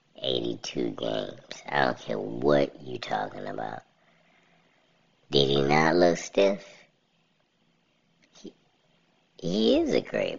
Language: English